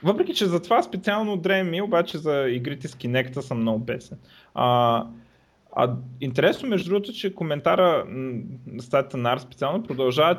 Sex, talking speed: male, 150 wpm